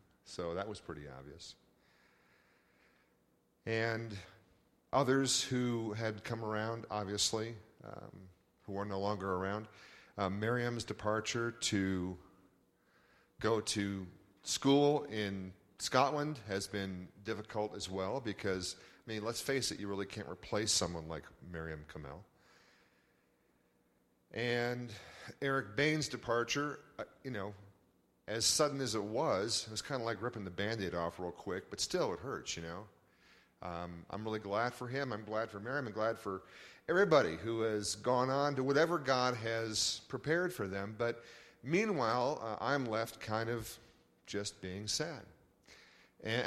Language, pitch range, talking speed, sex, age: English, 95-120 Hz, 145 wpm, male, 40-59